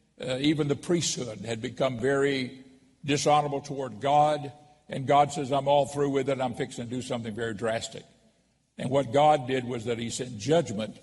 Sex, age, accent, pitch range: male, 60-79, American, 115-140 Hz